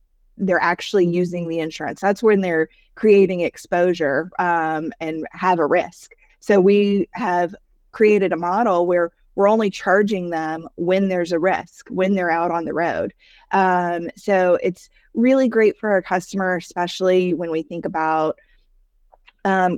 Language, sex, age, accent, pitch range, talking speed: English, female, 20-39, American, 175-200 Hz, 150 wpm